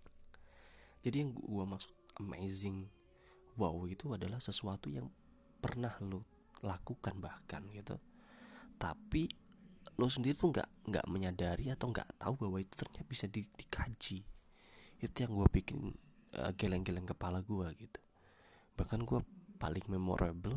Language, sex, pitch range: Indonesian, male, 90-120 Hz